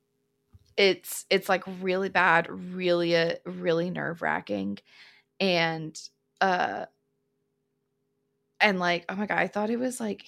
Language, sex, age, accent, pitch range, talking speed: English, female, 20-39, American, 155-195 Hz, 130 wpm